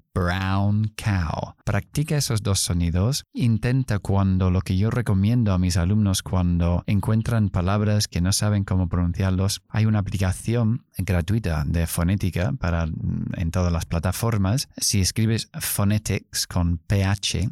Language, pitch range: Spanish, 95-115 Hz